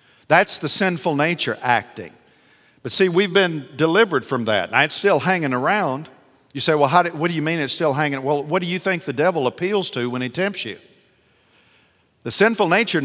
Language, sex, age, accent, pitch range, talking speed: English, male, 50-69, American, 130-175 Hz, 200 wpm